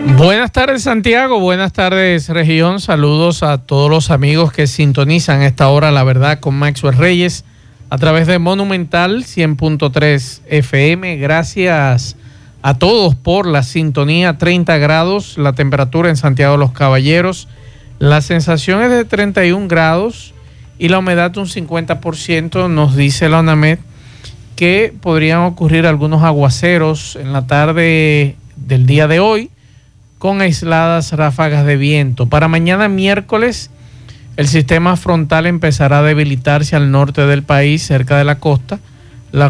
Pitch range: 140-170 Hz